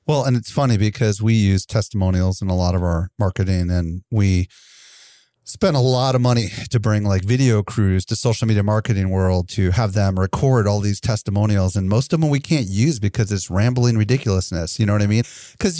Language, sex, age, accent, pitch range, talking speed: English, male, 30-49, American, 105-130 Hz, 210 wpm